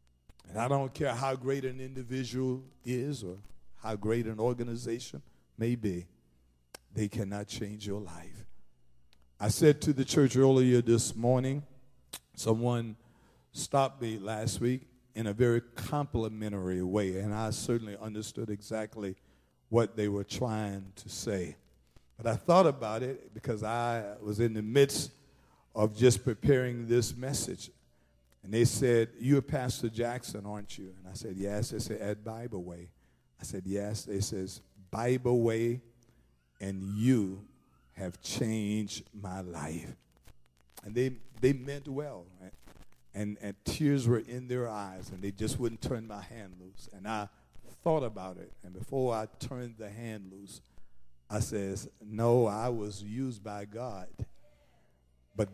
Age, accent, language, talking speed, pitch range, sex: 50-69, American, English, 150 wpm, 100-125 Hz, male